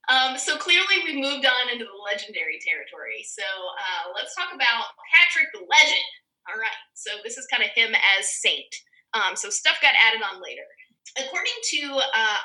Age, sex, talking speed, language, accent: 20-39, female, 185 wpm, English, American